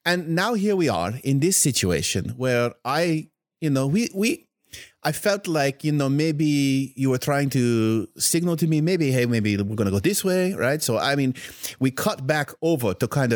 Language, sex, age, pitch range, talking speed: English, male, 30-49, 110-150 Hz, 205 wpm